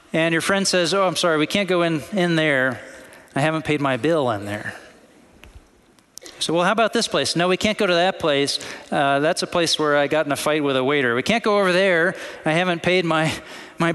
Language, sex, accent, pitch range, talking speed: English, male, American, 155-220 Hz, 240 wpm